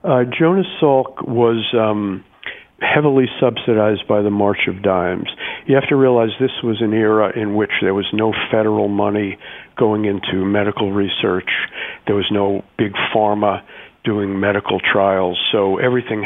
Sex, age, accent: male, 50-69, American